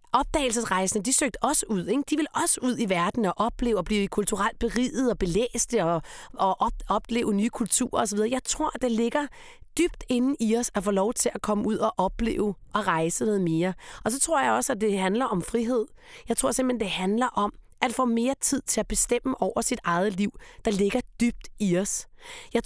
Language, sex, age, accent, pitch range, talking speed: Danish, female, 30-49, native, 205-255 Hz, 215 wpm